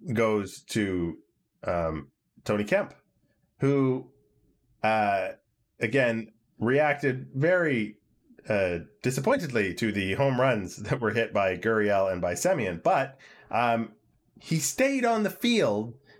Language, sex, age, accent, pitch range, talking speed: English, male, 30-49, American, 115-155 Hz, 115 wpm